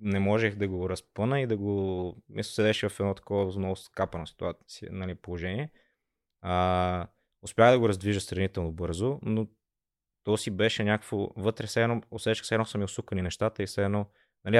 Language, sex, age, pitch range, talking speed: Bulgarian, male, 20-39, 90-105 Hz, 165 wpm